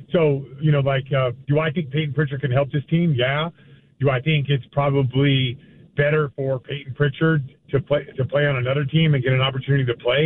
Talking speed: 215 wpm